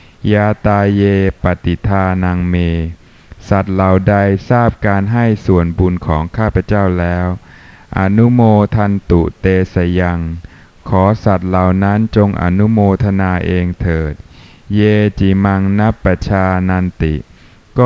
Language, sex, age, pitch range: Thai, male, 20-39, 90-105 Hz